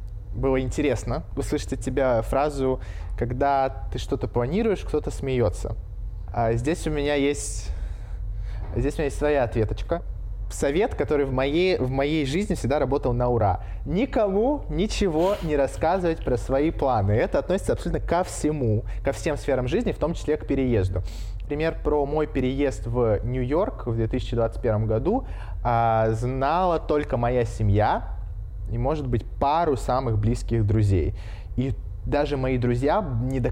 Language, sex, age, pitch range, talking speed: Russian, male, 20-39, 100-135 Hz, 140 wpm